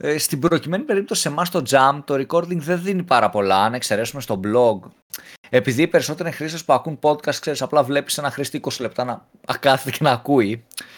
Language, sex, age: Greek, male, 20-39